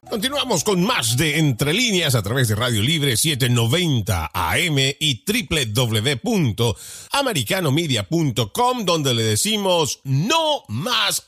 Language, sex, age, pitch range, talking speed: Spanish, male, 40-59, 105-160 Hz, 105 wpm